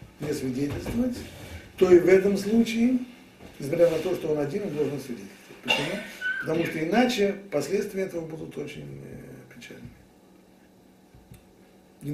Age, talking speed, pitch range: 50-69, 130 wpm, 125-180 Hz